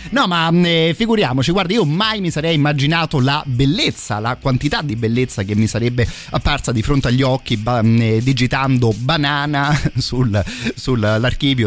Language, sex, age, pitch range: Italian, male, 30-49, 105-130 Hz